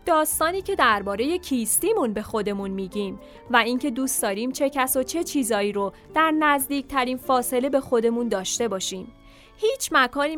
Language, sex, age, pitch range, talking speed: Persian, female, 30-49, 210-285 Hz, 150 wpm